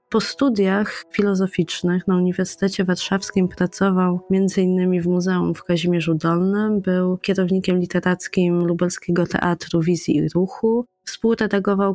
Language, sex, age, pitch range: Polish, female, 20-39, 175-195 Hz